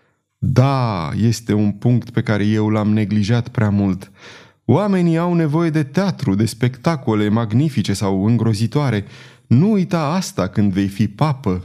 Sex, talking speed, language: male, 145 wpm, Romanian